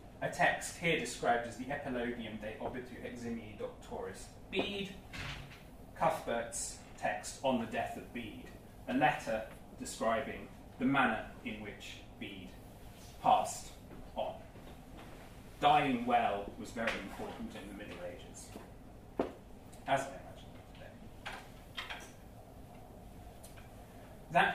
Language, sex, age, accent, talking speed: English, male, 30-49, British, 105 wpm